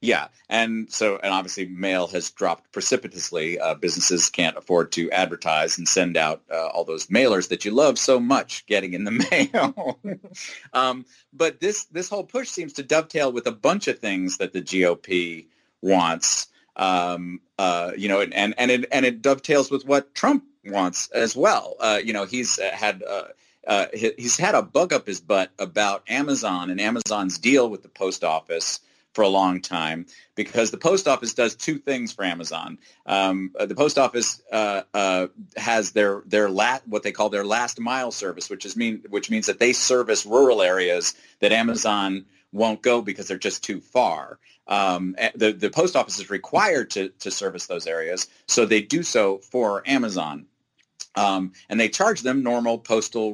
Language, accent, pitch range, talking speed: English, American, 95-135 Hz, 180 wpm